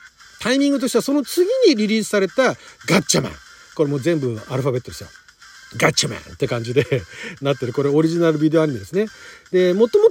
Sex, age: male, 40-59